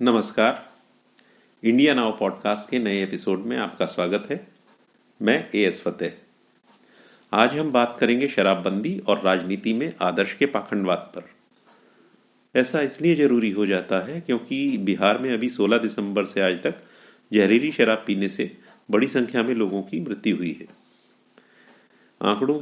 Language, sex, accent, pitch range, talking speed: Hindi, male, native, 100-130 Hz, 145 wpm